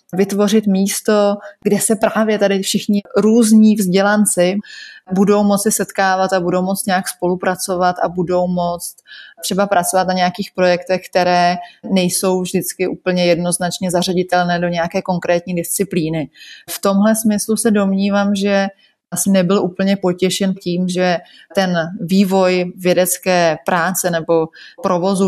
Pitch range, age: 175-195 Hz, 30-49